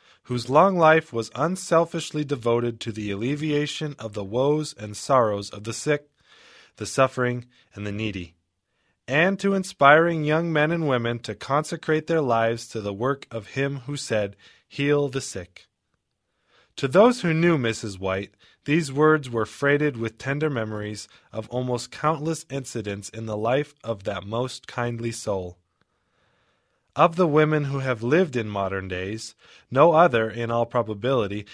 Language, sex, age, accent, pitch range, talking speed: English, male, 20-39, American, 105-145 Hz, 155 wpm